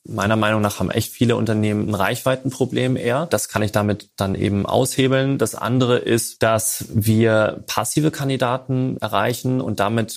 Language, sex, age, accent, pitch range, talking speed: German, male, 30-49, German, 105-120 Hz, 160 wpm